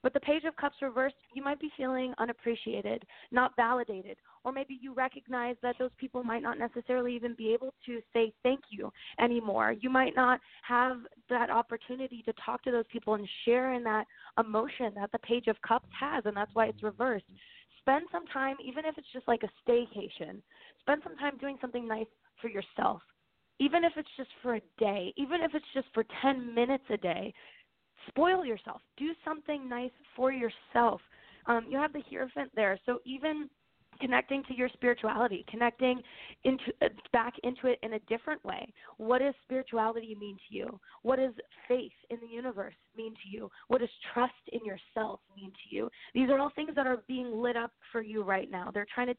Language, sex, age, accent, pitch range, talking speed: English, female, 20-39, American, 225-265 Hz, 195 wpm